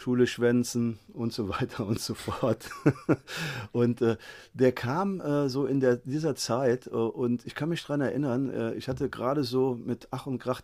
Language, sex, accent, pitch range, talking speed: German, male, German, 105-130 Hz, 190 wpm